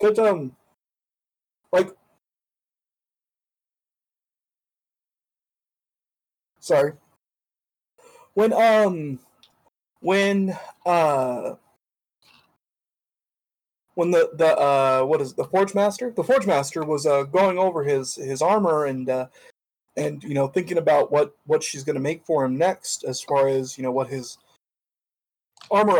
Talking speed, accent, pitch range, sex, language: 120 wpm, American, 130-175 Hz, male, English